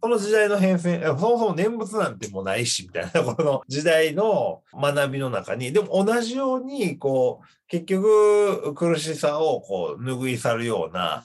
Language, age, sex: Japanese, 40-59, male